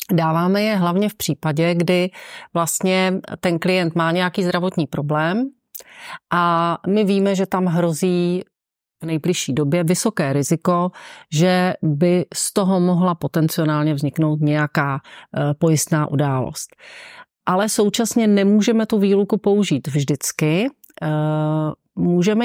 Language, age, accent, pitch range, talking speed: Czech, 40-59, native, 160-190 Hz, 110 wpm